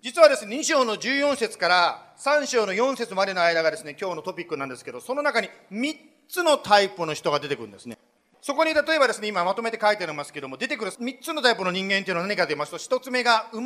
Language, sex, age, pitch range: Japanese, male, 40-59, 190-275 Hz